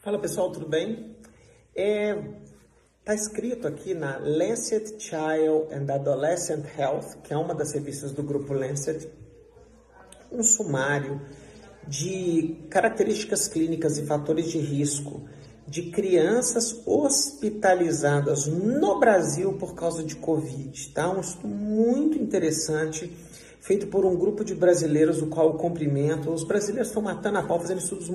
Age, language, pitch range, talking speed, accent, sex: 50-69, Portuguese, 155-215 Hz, 135 wpm, Brazilian, male